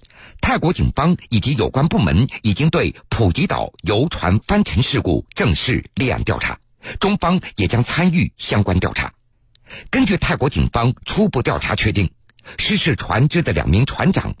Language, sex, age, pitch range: Chinese, male, 50-69, 100-145 Hz